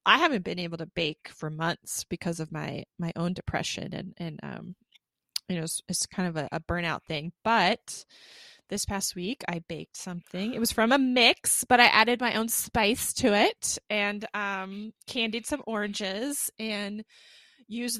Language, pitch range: English, 185-230 Hz